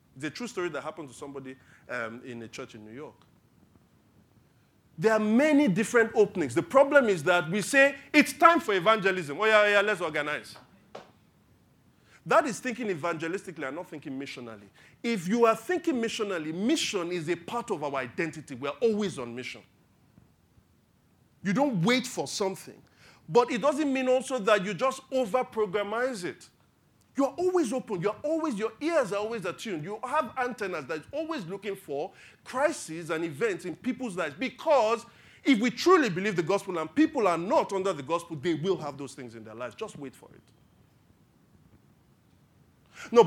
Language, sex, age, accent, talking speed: English, male, 40-59, Nigerian, 175 wpm